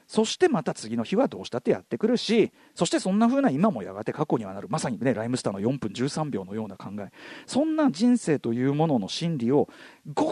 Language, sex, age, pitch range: Japanese, male, 40-59, 165-270 Hz